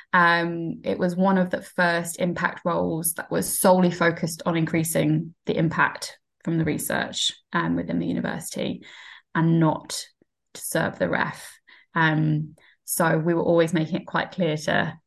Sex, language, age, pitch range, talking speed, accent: female, English, 20-39, 165-185 Hz, 165 wpm, British